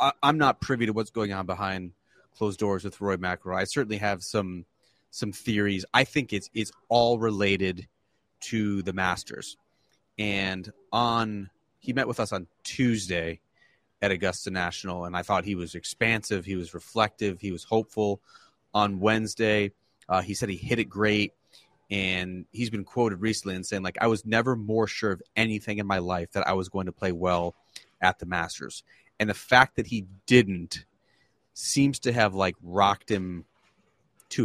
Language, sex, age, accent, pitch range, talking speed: English, male, 30-49, American, 95-115 Hz, 175 wpm